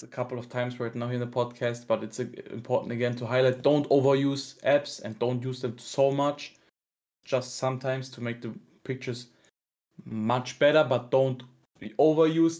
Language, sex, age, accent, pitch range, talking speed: English, male, 20-39, German, 125-145 Hz, 170 wpm